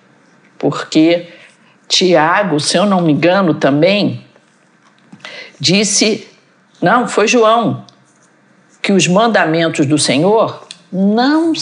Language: Portuguese